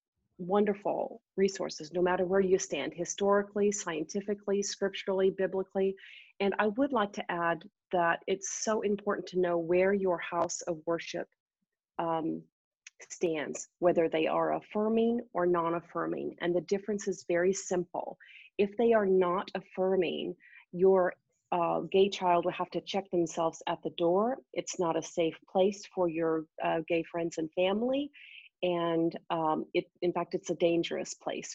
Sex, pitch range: female, 170-195 Hz